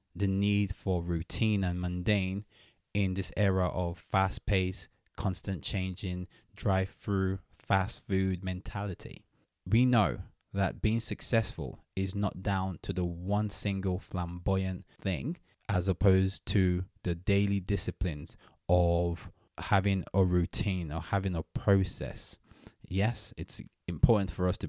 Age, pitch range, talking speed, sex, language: 20-39, 90-105 Hz, 130 wpm, male, English